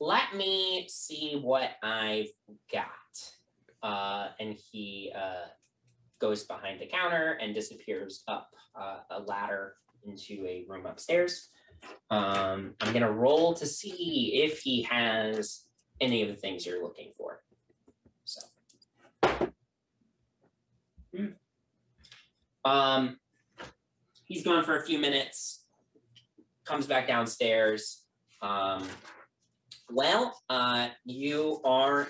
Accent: American